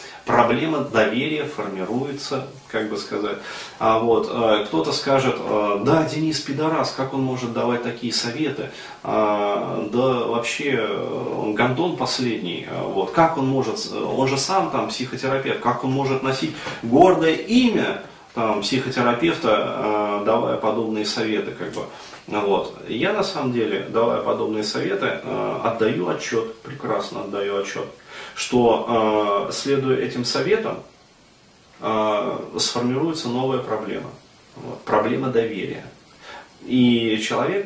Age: 30-49